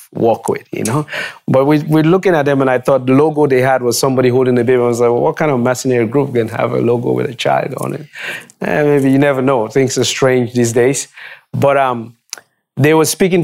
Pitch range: 115-140 Hz